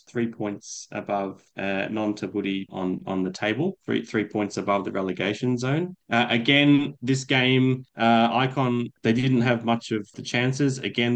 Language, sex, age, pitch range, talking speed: English, male, 20-39, 100-125 Hz, 165 wpm